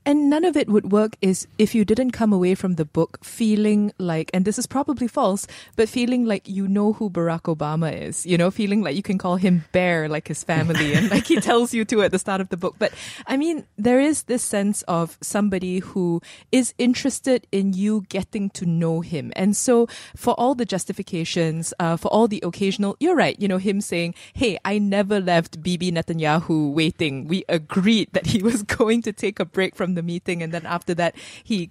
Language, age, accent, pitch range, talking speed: English, 20-39, Malaysian, 170-220 Hz, 220 wpm